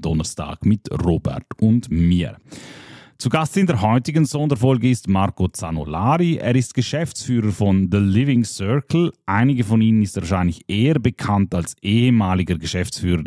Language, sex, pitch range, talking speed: German, male, 95-130 Hz, 140 wpm